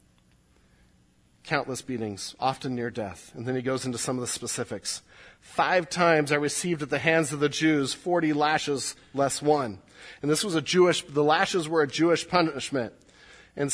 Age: 40-59